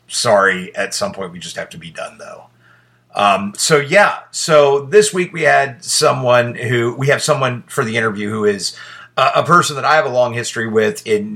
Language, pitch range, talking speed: English, 100-150 Hz, 210 wpm